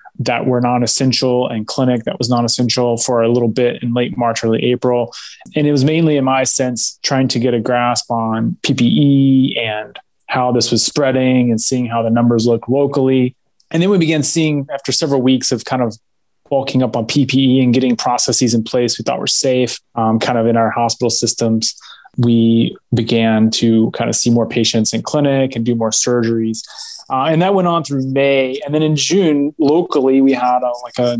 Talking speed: 200 wpm